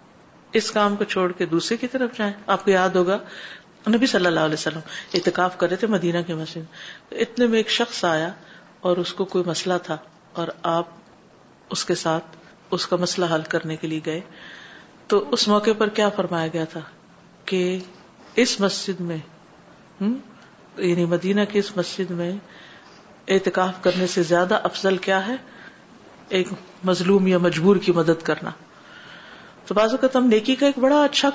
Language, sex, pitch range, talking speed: Urdu, female, 175-230 Hz, 165 wpm